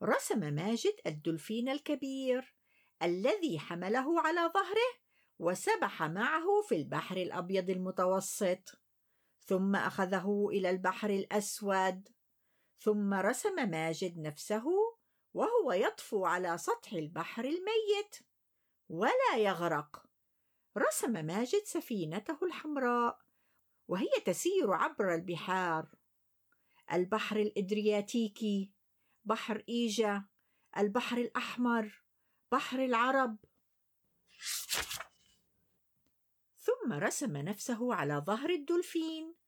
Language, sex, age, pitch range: Arabic, female, 50-69, 195-325 Hz